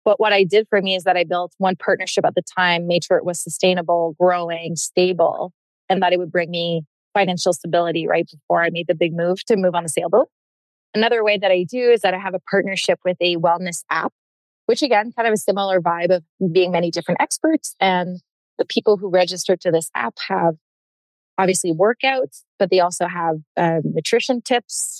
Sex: female